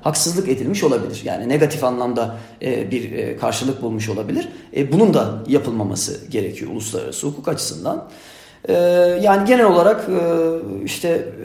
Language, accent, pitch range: Turkish, native, 125-175 Hz